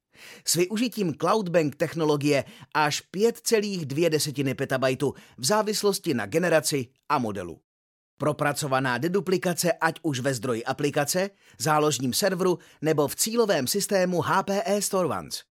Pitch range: 145-190 Hz